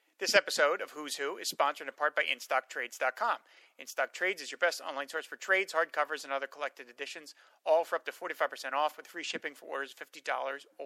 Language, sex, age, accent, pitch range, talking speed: English, male, 40-59, American, 140-165 Hz, 205 wpm